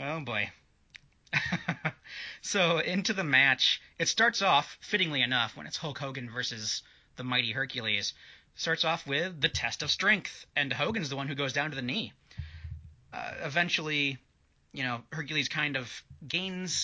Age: 30-49